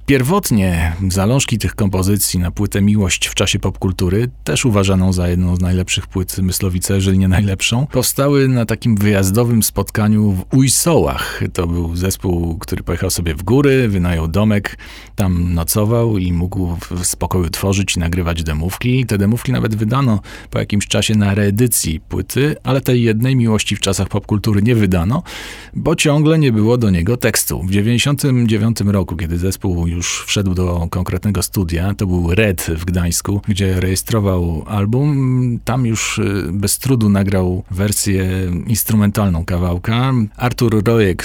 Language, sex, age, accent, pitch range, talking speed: Polish, male, 40-59, native, 95-115 Hz, 150 wpm